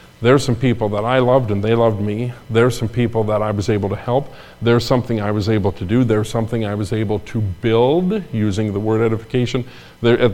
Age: 50-69